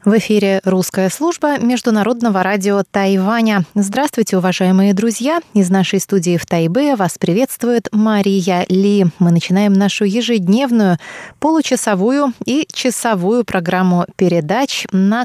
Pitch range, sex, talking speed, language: 180-230 Hz, female, 115 wpm, Russian